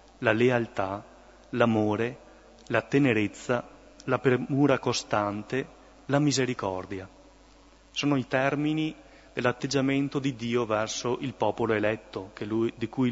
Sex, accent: male, native